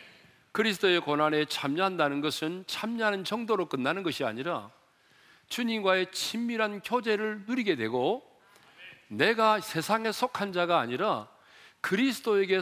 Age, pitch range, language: 40-59, 140-195 Hz, Korean